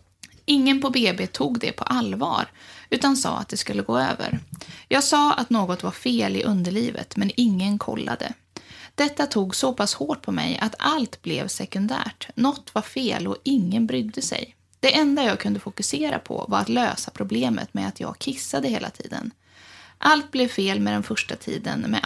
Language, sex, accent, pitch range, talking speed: English, female, Swedish, 195-250 Hz, 180 wpm